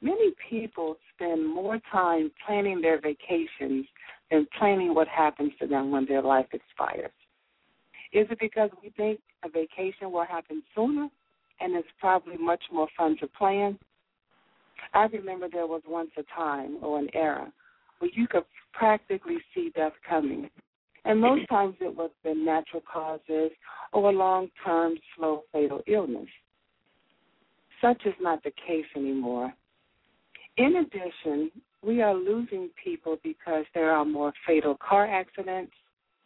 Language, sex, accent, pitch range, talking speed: English, female, American, 155-210 Hz, 140 wpm